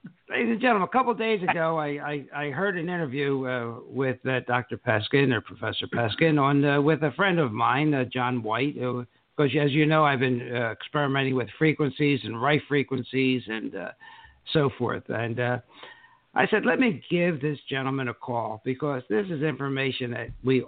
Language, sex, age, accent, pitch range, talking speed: English, male, 60-79, American, 130-175 Hz, 195 wpm